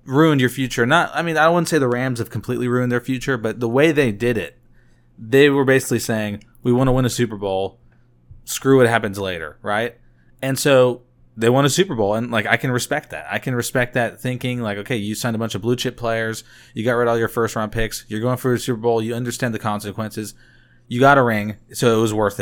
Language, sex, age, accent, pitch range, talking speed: English, male, 20-39, American, 105-130 Hz, 250 wpm